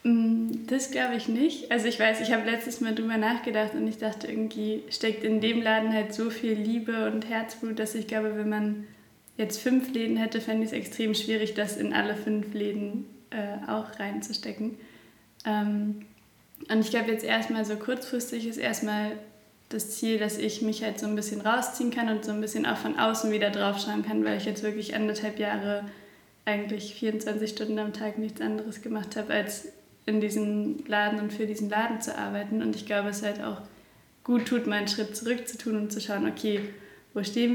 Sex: female